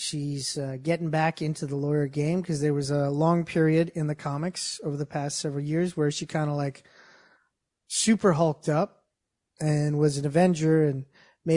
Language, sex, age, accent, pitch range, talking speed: English, male, 30-49, American, 150-190 Hz, 185 wpm